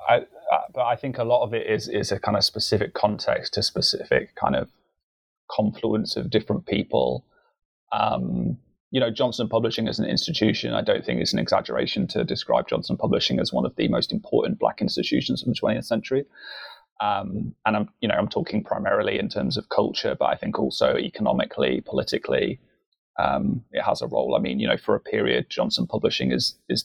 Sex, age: male, 20-39